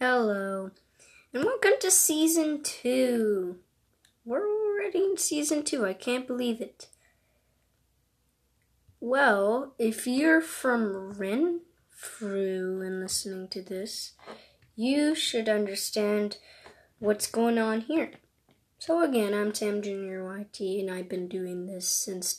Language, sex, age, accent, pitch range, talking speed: English, female, 20-39, American, 210-280 Hz, 115 wpm